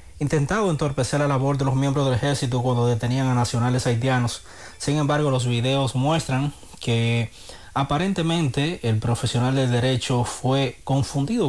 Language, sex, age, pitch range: Spanish, male, 30-49, 120-140 Hz